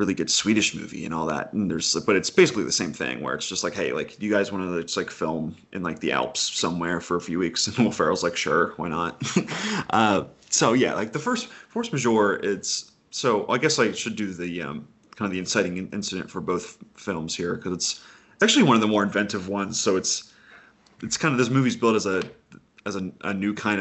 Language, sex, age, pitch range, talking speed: English, male, 30-49, 90-110 Hz, 235 wpm